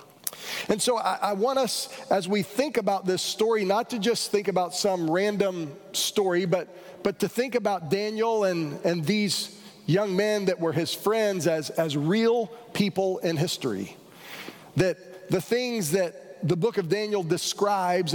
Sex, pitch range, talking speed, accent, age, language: male, 170-210 Hz, 165 wpm, American, 40-59, English